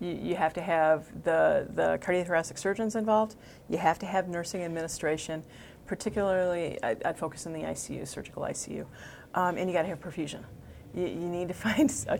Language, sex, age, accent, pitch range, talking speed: English, female, 40-59, American, 160-190 Hz, 180 wpm